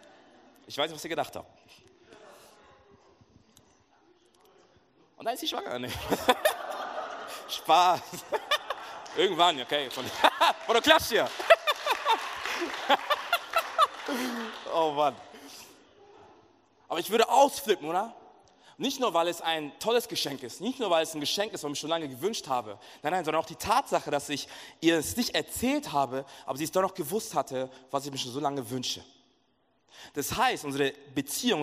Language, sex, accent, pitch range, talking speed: German, male, German, 130-180 Hz, 155 wpm